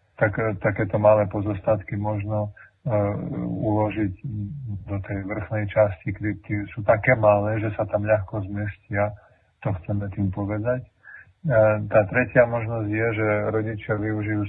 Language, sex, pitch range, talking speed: Slovak, male, 105-115 Hz, 125 wpm